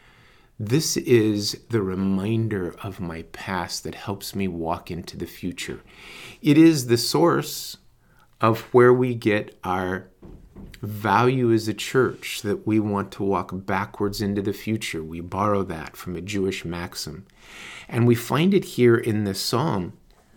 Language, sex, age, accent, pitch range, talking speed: English, male, 50-69, American, 95-115 Hz, 150 wpm